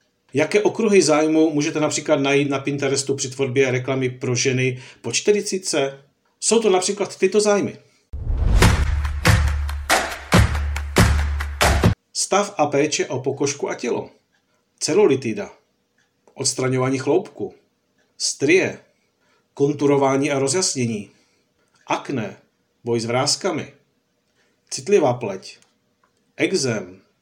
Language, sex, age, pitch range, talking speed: Czech, male, 50-69, 120-180 Hz, 90 wpm